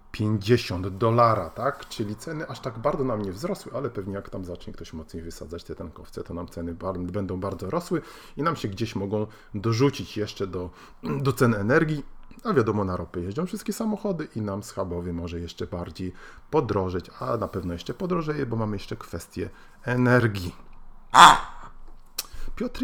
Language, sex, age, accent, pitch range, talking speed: Polish, male, 40-59, native, 90-120 Hz, 165 wpm